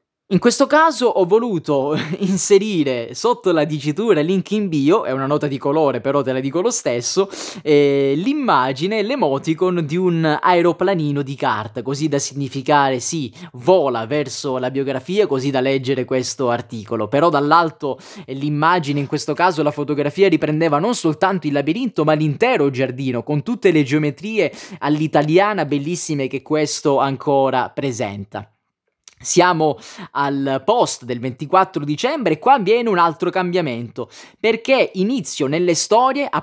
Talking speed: 145 wpm